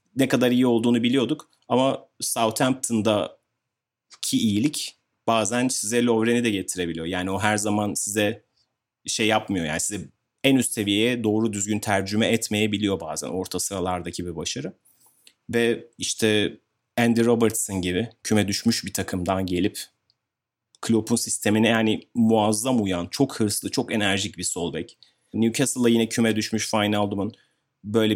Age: 30-49